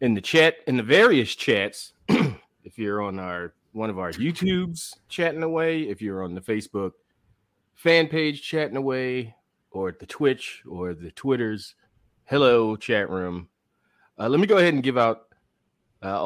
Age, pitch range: 30-49, 95-135 Hz